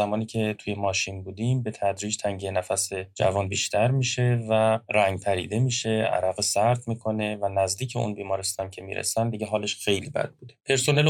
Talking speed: 170 wpm